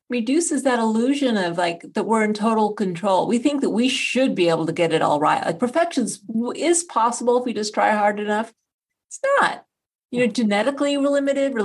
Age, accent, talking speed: 40-59, American, 205 wpm